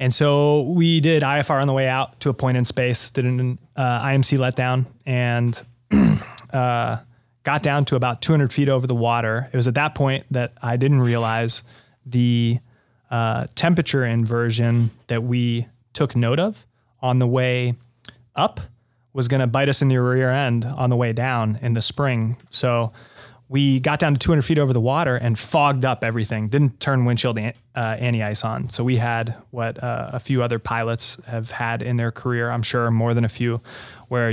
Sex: male